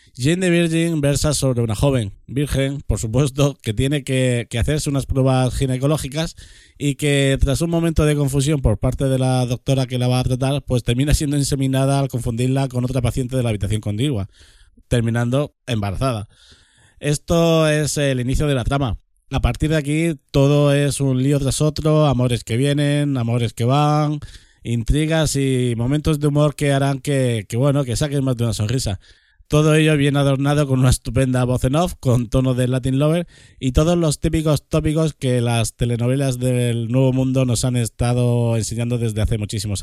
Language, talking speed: Spanish, 185 wpm